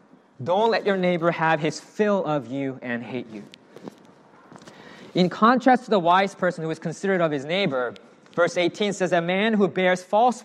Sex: male